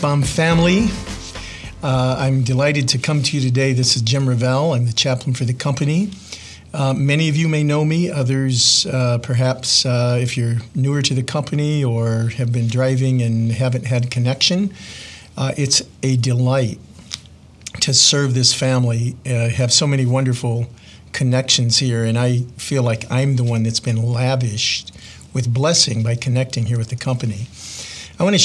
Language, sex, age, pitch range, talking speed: English, male, 50-69, 120-140 Hz, 170 wpm